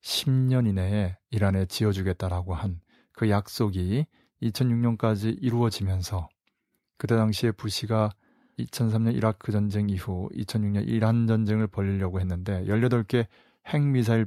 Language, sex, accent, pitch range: Korean, male, native, 100-115 Hz